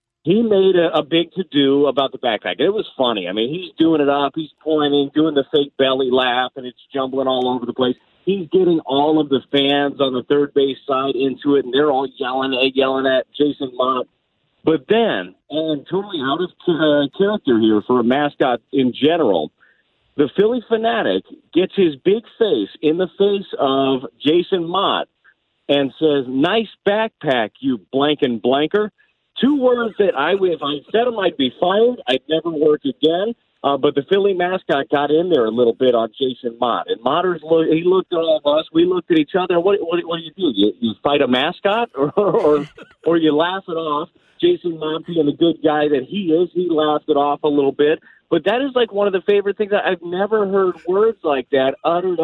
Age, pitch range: 40-59, 140-195 Hz